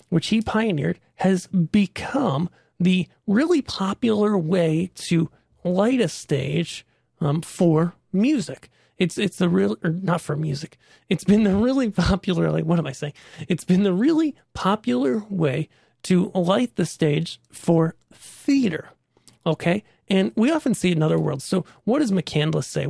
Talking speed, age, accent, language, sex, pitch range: 155 wpm, 30-49, American, English, male, 160-210 Hz